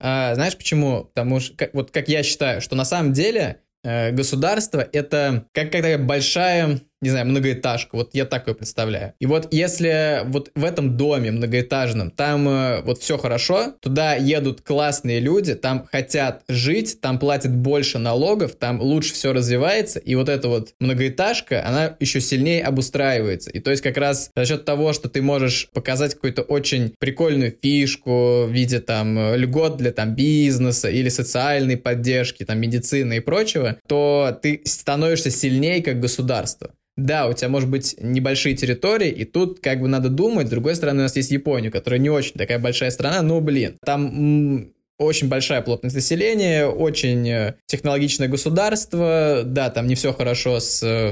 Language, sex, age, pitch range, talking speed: Russian, male, 20-39, 125-145 Hz, 160 wpm